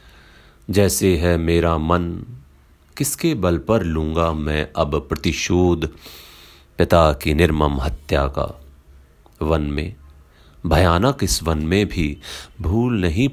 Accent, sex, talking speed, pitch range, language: native, male, 115 wpm, 70-85 Hz, Hindi